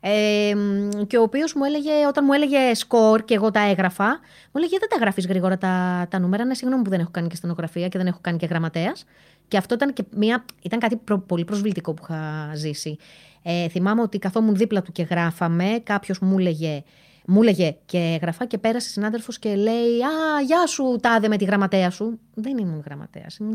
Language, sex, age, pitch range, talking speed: Greek, female, 30-49, 170-225 Hz, 205 wpm